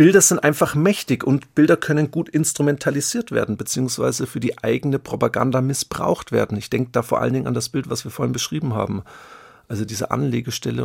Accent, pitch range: German, 120-155 Hz